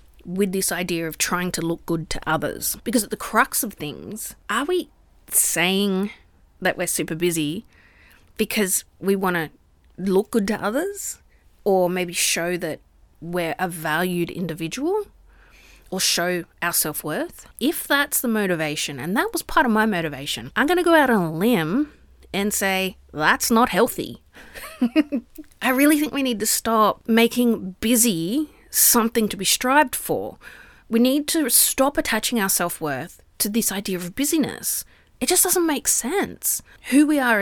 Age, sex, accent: 30-49, female, Australian